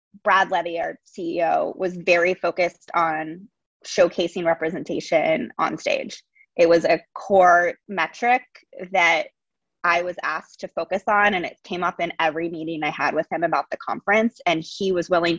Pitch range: 170-220 Hz